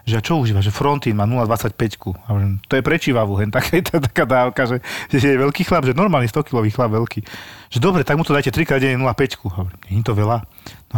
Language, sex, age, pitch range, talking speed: Slovak, male, 30-49, 110-135 Hz, 195 wpm